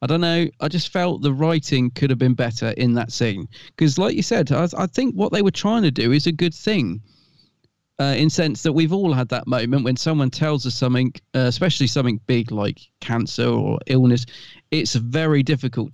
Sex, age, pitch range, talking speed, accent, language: male, 40-59, 120-155 Hz, 215 wpm, British, English